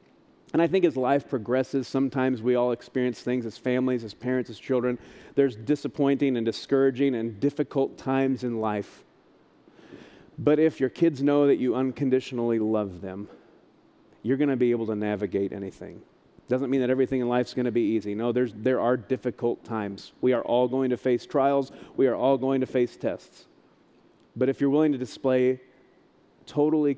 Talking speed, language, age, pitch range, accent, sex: 185 wpm, English, 40-59, 120-135 Hz, American, male